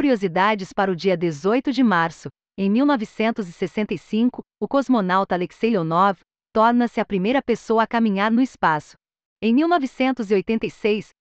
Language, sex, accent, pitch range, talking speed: Portuguese, female, Brazilian, 200-255 Hz, 125 wpm